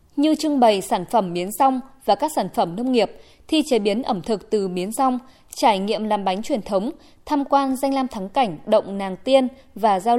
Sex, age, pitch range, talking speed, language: female, 20-39, 195-270 Hz, 225 wpm, Vietnamese